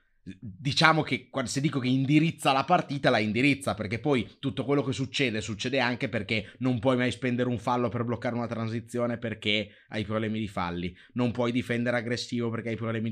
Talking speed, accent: 190 wpm, native